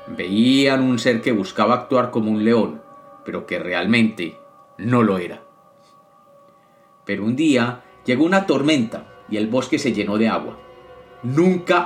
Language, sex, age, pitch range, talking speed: Spanish, male, 40-59, 110-135 Hz, 145 wpm